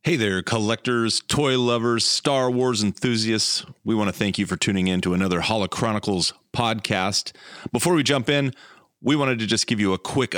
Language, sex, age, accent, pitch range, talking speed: English, male, 30-49, American, 95-115 Hz, 185 wpm